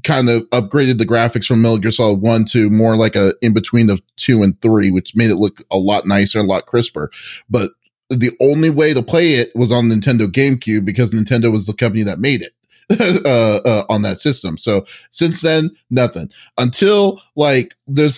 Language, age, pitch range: English, 30-49, 110-135 Hz